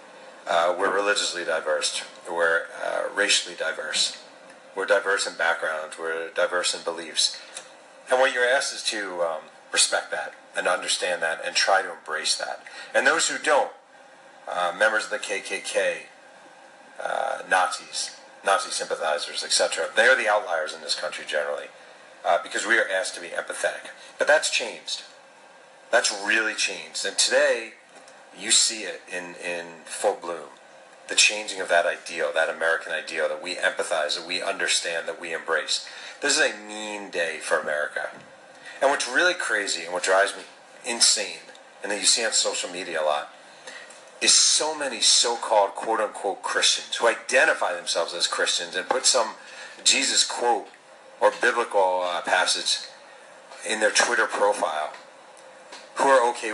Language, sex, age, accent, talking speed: English, male, 40-59, American, 155 wpm